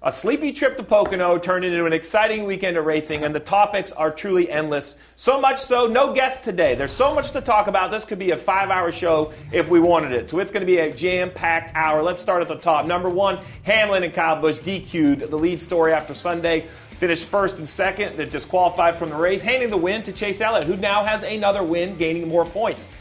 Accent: American